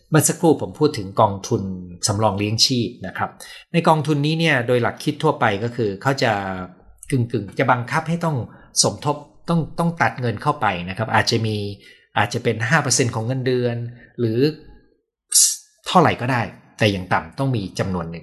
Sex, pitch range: male, 105-145 Hz